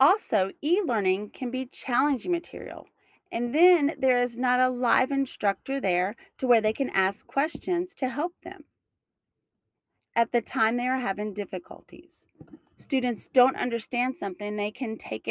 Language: English